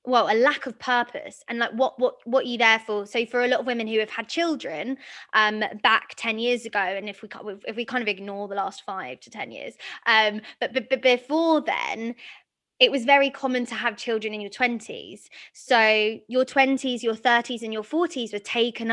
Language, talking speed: English, 215 wpm